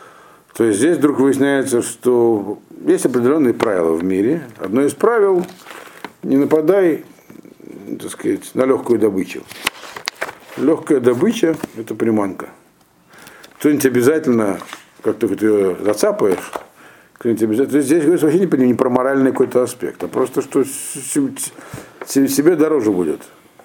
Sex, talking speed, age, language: male, 130 wpm, 60-79, Russian